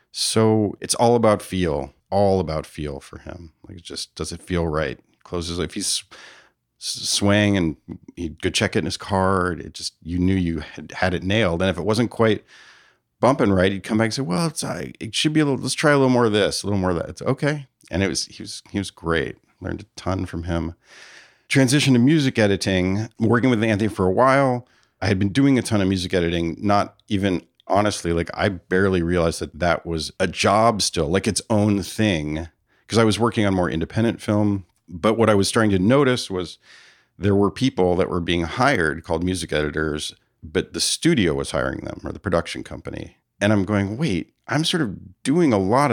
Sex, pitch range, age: male, 90-110 Hz, 40-59